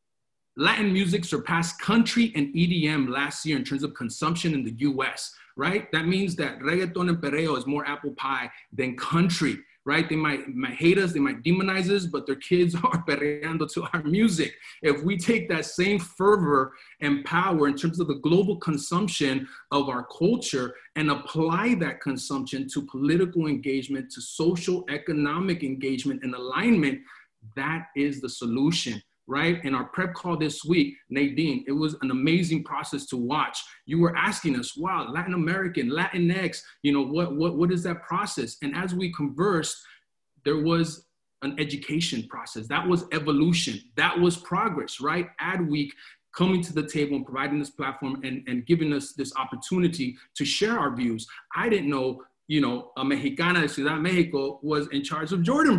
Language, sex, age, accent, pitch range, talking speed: English, male, 30-49, American, 140-175 Hz, 175 wpm